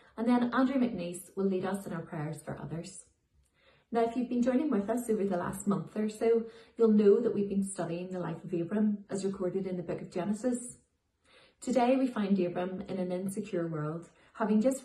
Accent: Irish